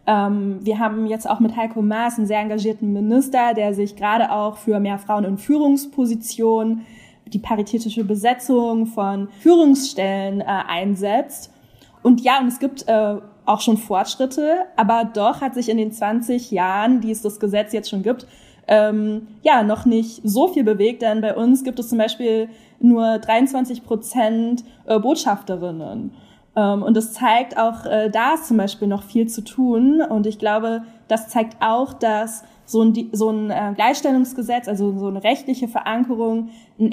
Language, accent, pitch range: German, German, 210-240 Hz